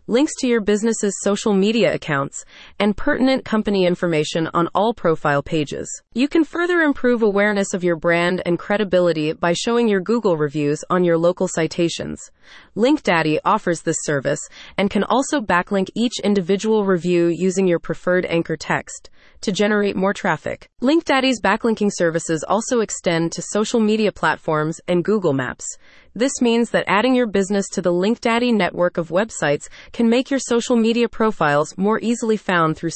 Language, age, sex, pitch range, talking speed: English, 30-49, female, 170-230 Hz, 160 wpm